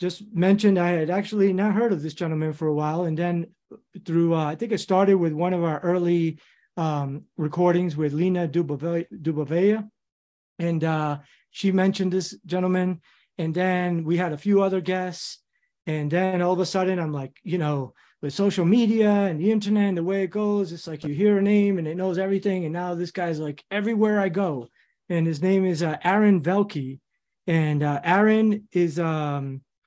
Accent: American